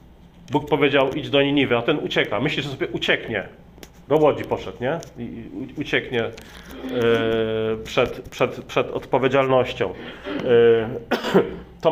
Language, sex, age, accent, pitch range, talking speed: Polish, male, 40-59, native, 125-170 Hz, 105 wpm